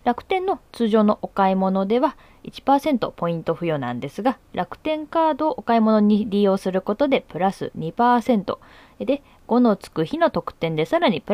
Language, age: Japanese, 20-39